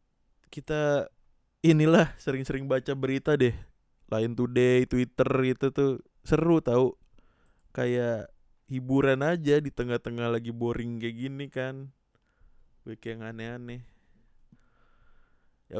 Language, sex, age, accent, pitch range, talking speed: Indonesian, male, 20-39, native, 115-135 Hz, 105 wpm